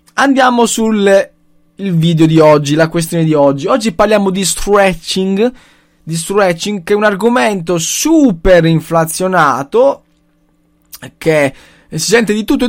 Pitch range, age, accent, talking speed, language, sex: 155-220 Hz, 20-39, native, 130 wpm, Italian, male